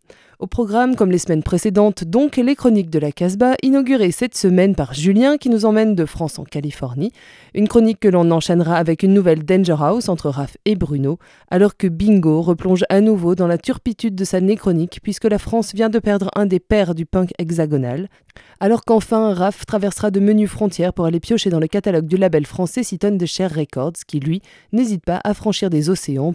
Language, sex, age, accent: French, female, 20-39, French